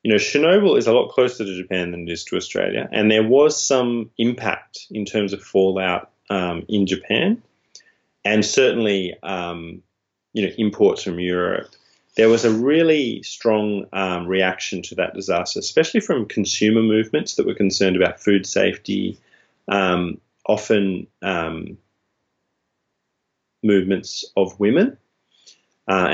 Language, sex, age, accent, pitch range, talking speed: English, male, 20-39, Australian, 95-115 Hz, 140 wpm